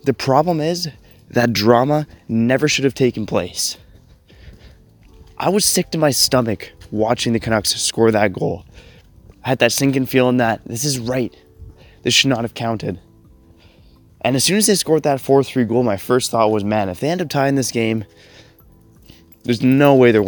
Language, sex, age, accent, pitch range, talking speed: English, male, 20-39, American, 105-140 Hz, 180 wpm